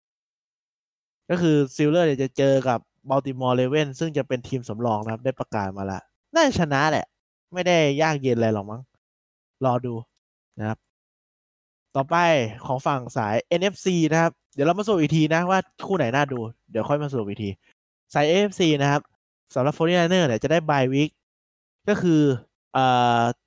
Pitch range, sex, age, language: 120-165 Hz, male, 20-39, Thai